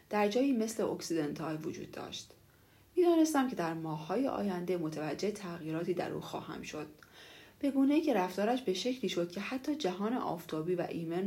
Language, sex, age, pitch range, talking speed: Persian, female, 30-49, 165-230 Hz, 160 wpm